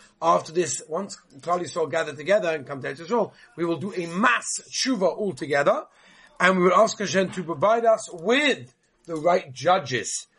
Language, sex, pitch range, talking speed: English, male, 160-200 Hz, 180 wpm